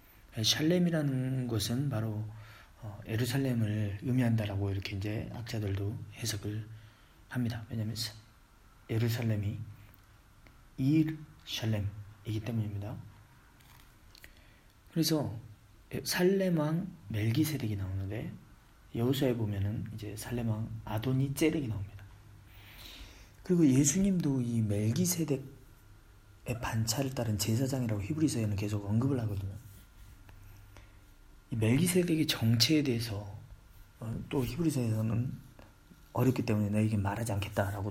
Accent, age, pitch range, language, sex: native, 40-59, 100-135 Hz, Korean, male